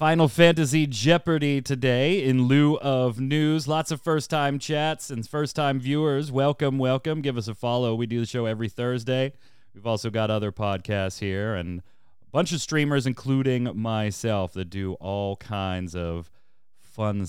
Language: English